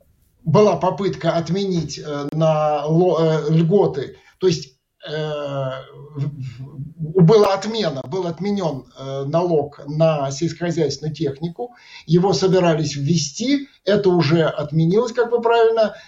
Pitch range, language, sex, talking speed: 155-215 Hz, Russian, male, 95 wpm